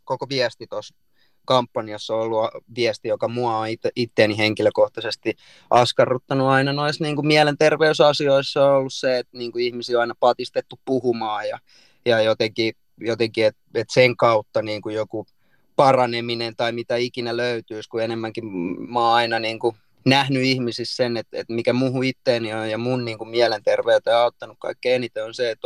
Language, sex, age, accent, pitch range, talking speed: Finnish, male, 20-39, native, 115-145 Hz, 165 wpm